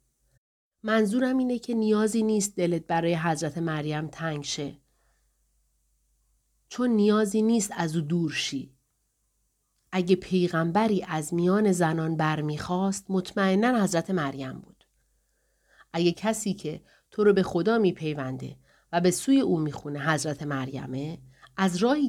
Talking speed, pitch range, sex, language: 120 wpm, 155-215 Hz, female, Persian